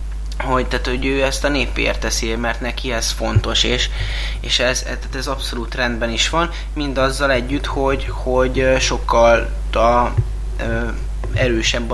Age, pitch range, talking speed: 20-39, 110-125 Hz, 135 wpm